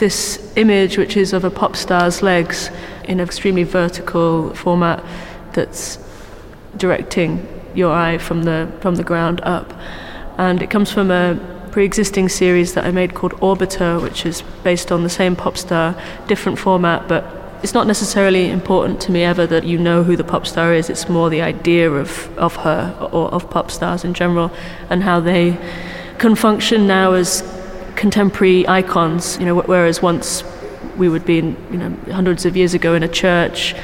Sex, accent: female, British